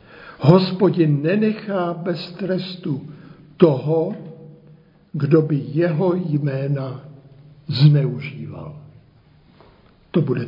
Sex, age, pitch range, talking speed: male, 60-79, 150-180 Hz, 70 wpm